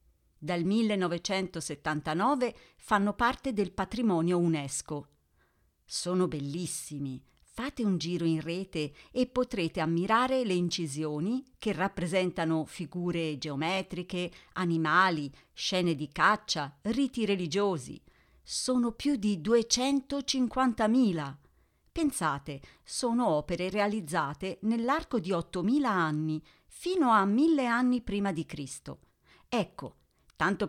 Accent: native